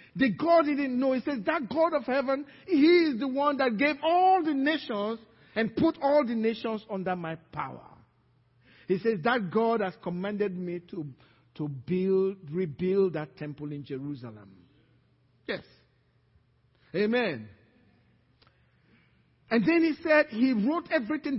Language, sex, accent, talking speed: English, male, Nigerian, 145 wpm